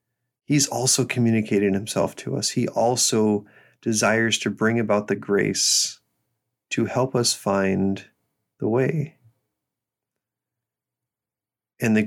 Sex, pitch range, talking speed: male, 100-120 Hz, 110 wpm